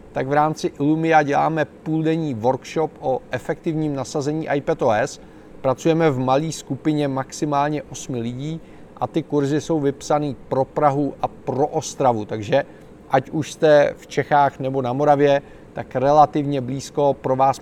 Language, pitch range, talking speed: Czech, 135-155 Hz, 145 wpm